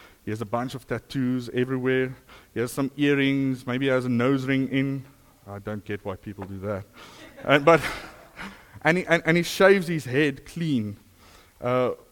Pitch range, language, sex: 115-165 Hz, English, male